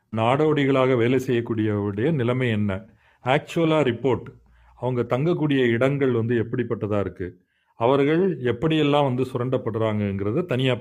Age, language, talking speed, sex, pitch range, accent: 40-59, Tamil, 100 wpm, male, 110-145 Hz, native